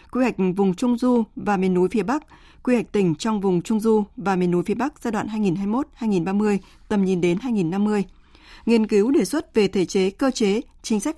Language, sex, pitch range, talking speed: Vietnamese, female, 190-240 Hz, 215 wpm